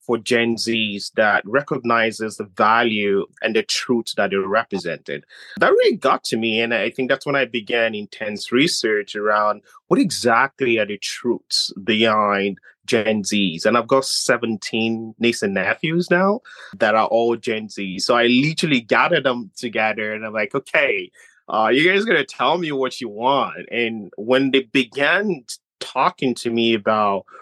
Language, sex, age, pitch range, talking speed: English, male, 30-49, 110-130 Hz, 170 wpm